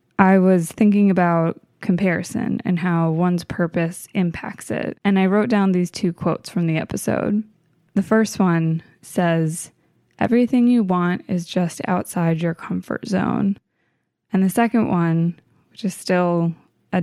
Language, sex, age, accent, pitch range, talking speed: English, female, 20-39, American, 165-200 Hz, 150 wpm